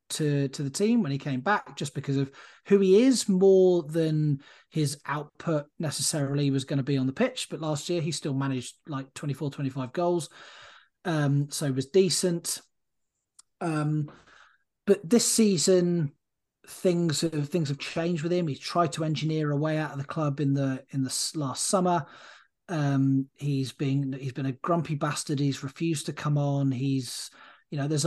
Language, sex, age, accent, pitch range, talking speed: English, male, 30-49, British, 135-165 Hz, 180 wpm